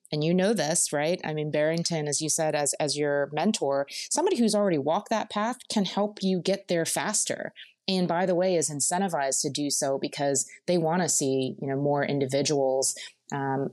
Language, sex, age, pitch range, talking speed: English, female, 30-49, 150-185 Hz, 195 wpm